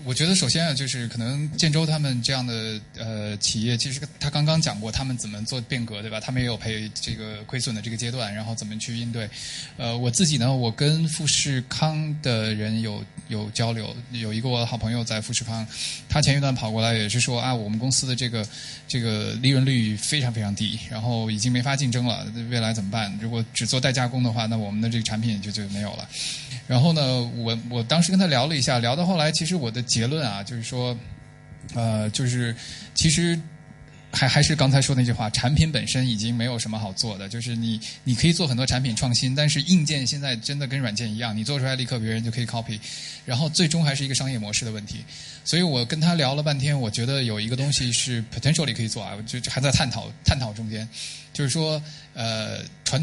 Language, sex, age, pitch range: Chinese, male, 20-39, 115-145 Hz